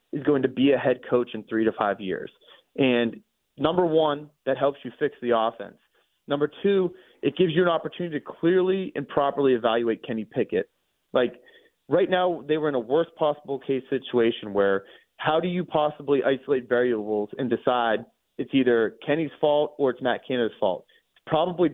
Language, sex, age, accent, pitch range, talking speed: English, male, 30-49, American, 120-150 Hz, 180 wpm